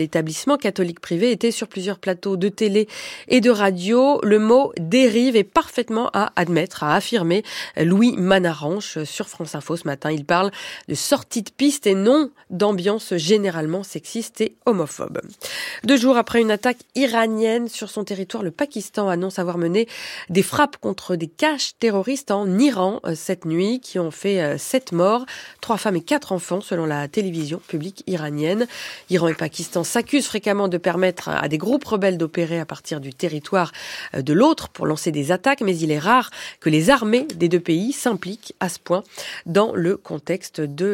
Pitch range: 175-235 Hz